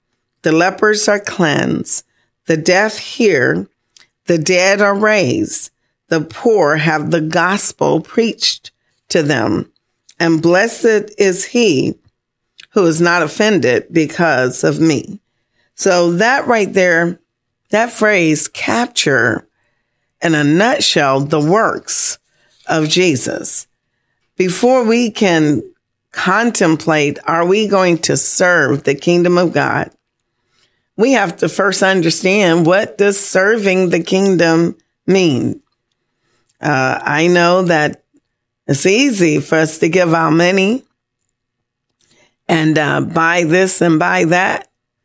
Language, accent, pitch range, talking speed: English, American, 145-190 Hz, 115 wpm